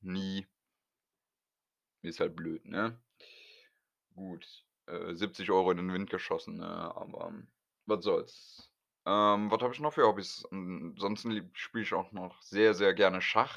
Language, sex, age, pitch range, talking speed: German, male, 20-39, 90-105 Hz, 150 wpm